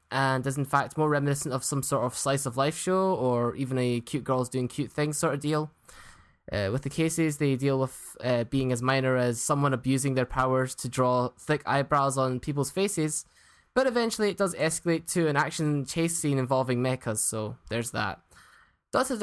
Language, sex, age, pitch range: English, male, 10-29, 125-155 Hz